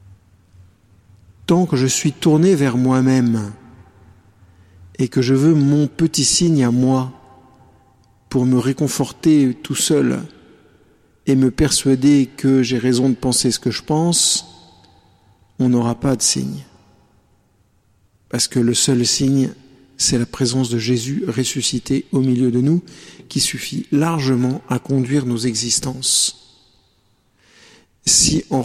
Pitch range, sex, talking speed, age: 120-140 Hz, male, 130 wpm, 50-69